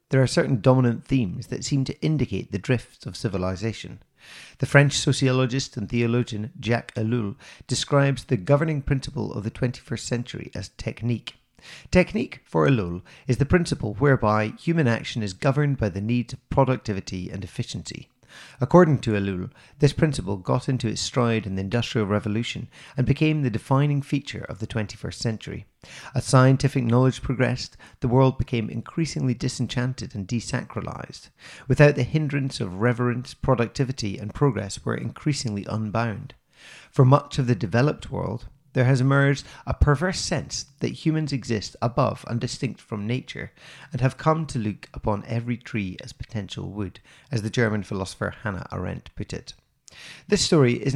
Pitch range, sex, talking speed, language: 110-140 Hz, male, 160 wpm, English